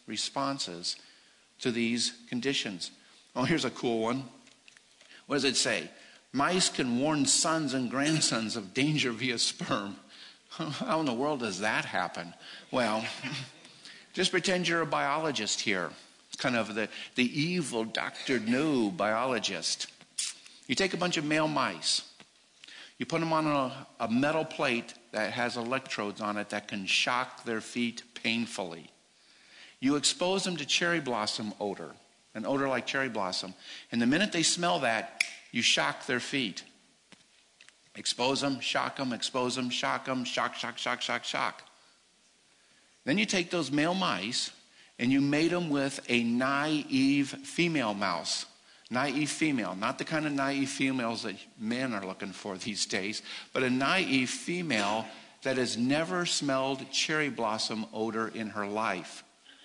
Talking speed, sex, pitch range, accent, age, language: 150 wpm, male, 115-160 Hz, American, 50-69, English